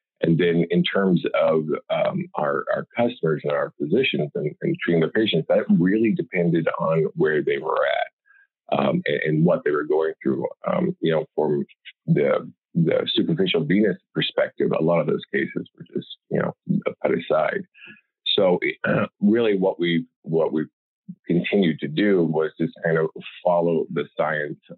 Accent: American